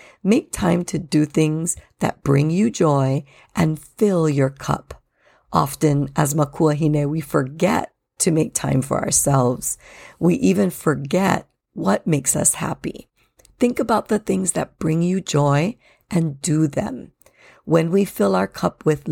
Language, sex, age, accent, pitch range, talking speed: English, female, 50-69, American, 140-175 Hz, 150 wpm